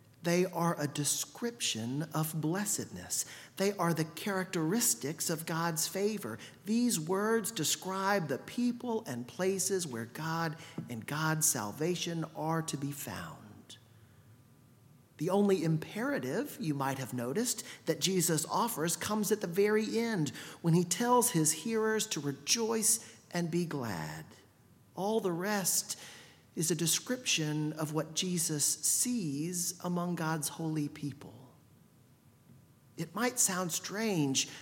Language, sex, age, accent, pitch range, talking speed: English, male, 40-59, American, 150-205 Hz, 125 wpm